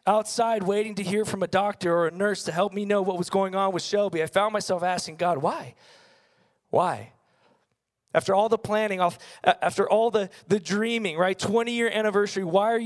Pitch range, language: 150-205 Hz, English